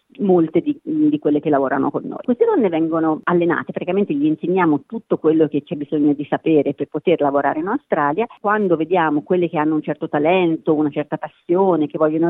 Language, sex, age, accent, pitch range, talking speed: Italian, female, 40-59, native, 150-205 Hz, 195 wpm